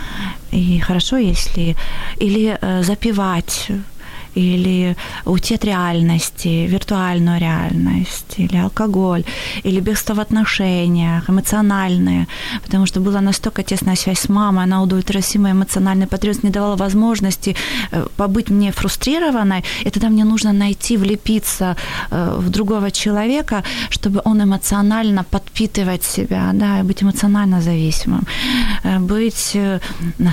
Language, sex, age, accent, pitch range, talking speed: Ukrainian, female, 20-39, native, 180-210 Hz, 110 wpm